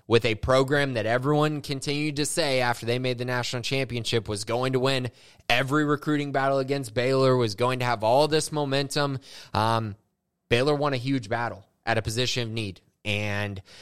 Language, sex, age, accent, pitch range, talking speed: English, male, 20-39, American, 105-130 Hz, 180 wpm